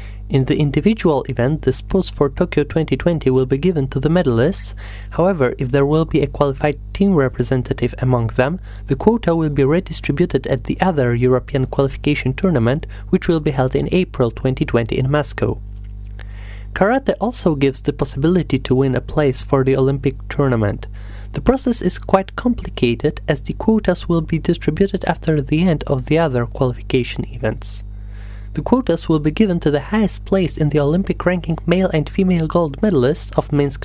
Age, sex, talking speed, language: 20-39, male, 175 wpm, English